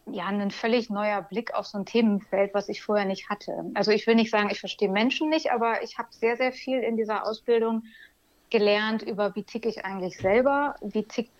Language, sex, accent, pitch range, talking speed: German, female, German, 200-240 Hz, 215 wpm